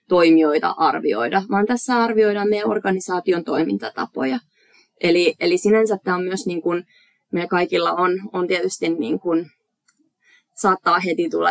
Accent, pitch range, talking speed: native, 165-205 Hz, 130 wpm